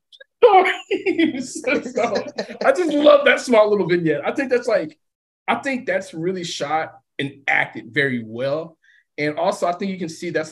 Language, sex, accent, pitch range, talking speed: English, male, American, 125-190 Hz, 160 wpm